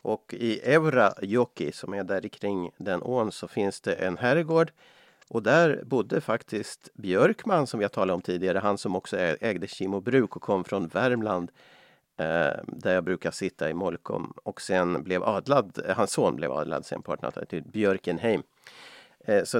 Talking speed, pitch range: 160 wpm, 100-135 Hz